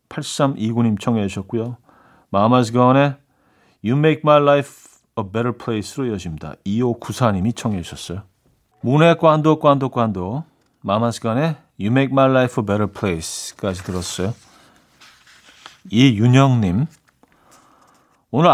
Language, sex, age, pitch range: Korean, male, 40-59, 105-150 Hz